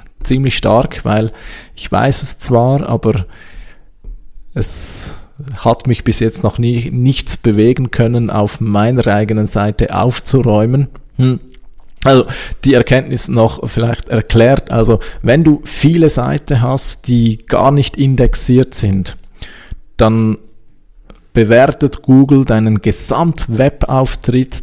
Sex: male